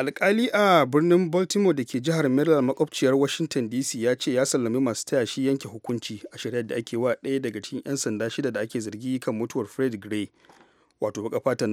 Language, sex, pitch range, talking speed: English, male, 115-135 Hz, 185 wpm